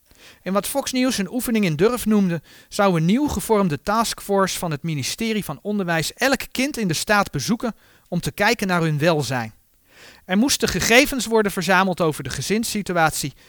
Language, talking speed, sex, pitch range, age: Dutch, 175 wpm, male, 155-230 Hz, 40-59